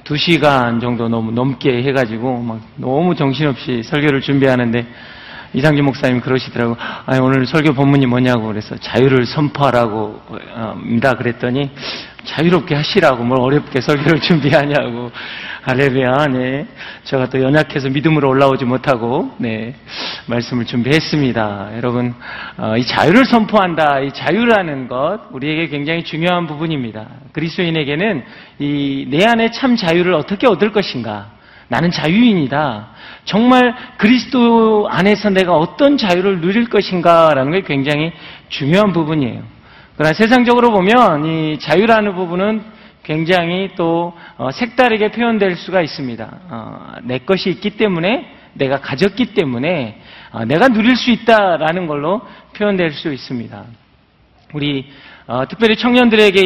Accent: native